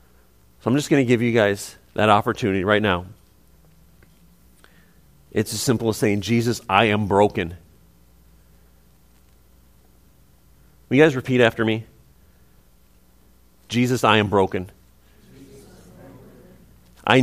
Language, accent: English, American